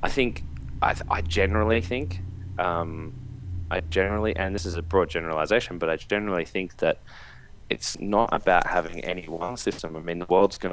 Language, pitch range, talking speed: English, 80-95 Hz, 185 wpm